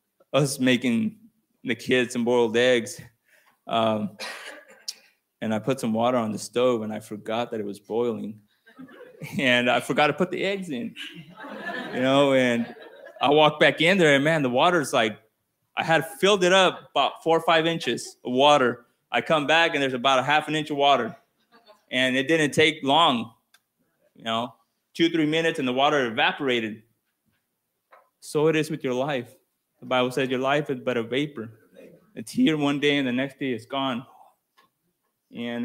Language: English